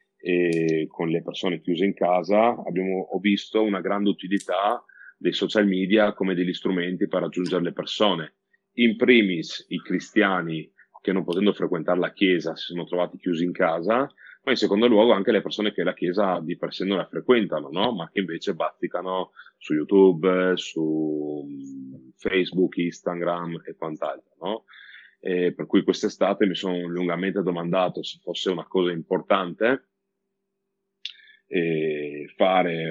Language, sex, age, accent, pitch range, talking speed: Italian, male, 30-49, native, 80-95 Hz, 150 wpm